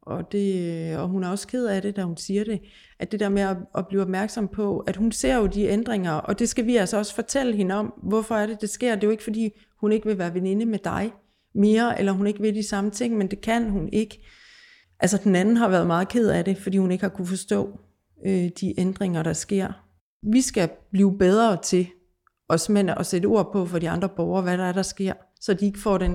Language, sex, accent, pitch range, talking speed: Danish, female, native, 185-215 Hz, 255 wpm